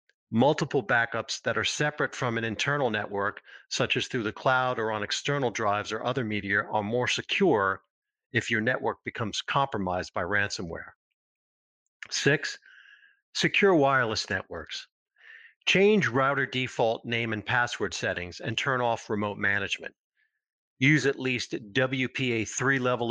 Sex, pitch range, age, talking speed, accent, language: male, 110-145 Hz, 50-69, 135 wpm, American, English